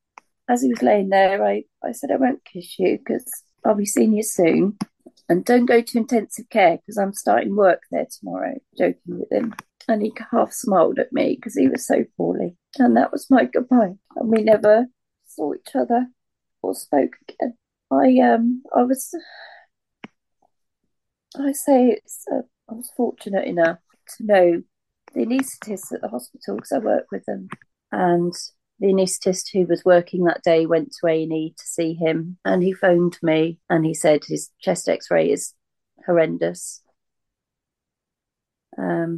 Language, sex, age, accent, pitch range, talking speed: English, female, 30-49, British, 170-225 Hz, 170 wpm